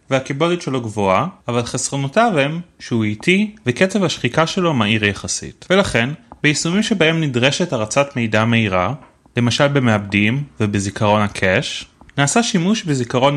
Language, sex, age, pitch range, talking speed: Hebrew, male, 30-49, 115-165 Hz, 120 wpm